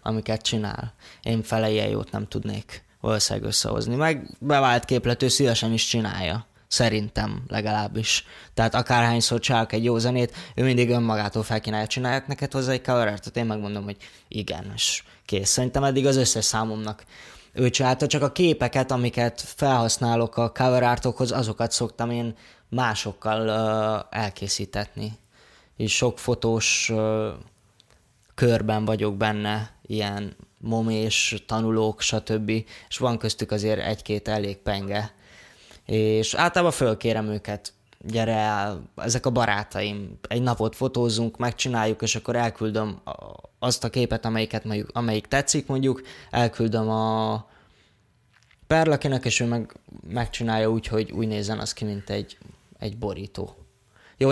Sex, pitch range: male, 105-120 Hz